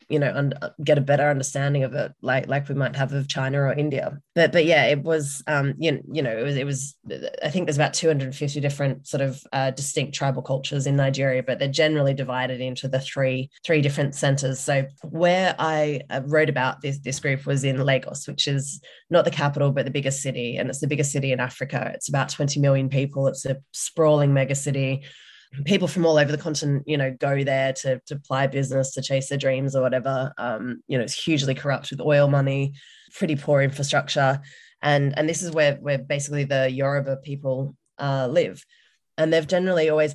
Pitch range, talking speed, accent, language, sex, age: 135-150 Hz, 210 wpm, Australian, English, female, 20-39